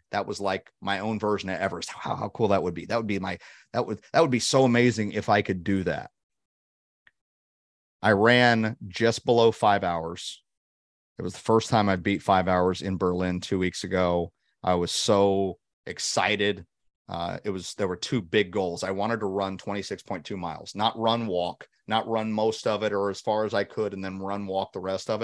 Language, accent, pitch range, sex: English, American, 90-110 Hz, male